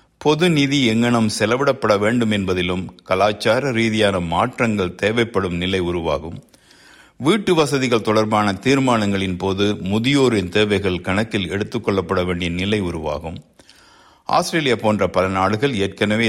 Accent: native